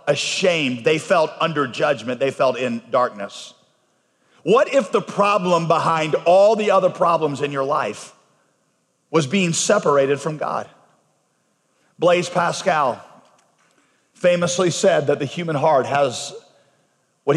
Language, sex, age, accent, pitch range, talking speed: English, male, 40-59, American, 155-190 Hz, 125 wpm